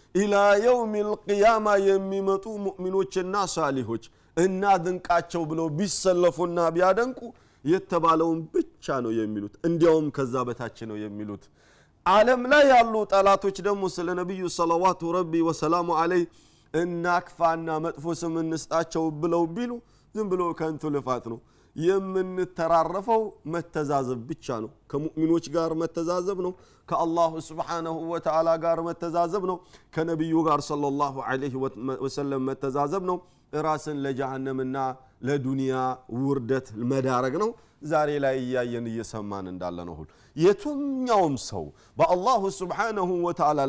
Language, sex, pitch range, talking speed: Amharic, male, 140-190 Hz, 105 wpm